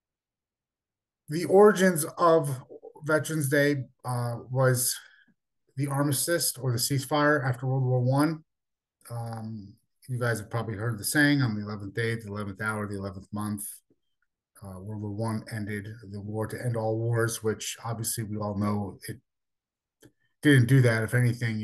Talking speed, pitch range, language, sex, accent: 155 wpm, 110-140 Hz, English, male, American